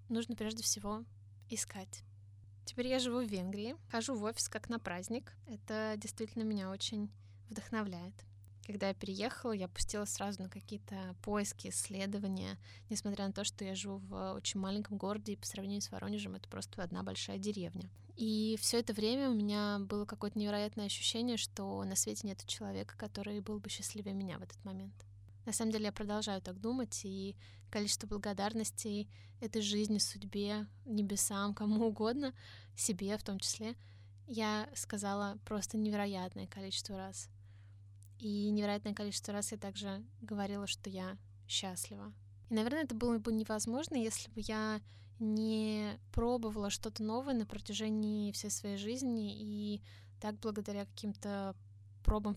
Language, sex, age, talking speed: Russian, female, 20-39, 150 wpm